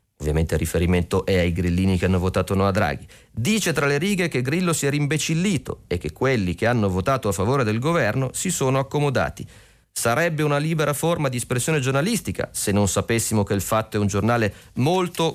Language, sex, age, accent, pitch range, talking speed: Italian, male, 30-49, native, 100-130 Hz, 200 wpm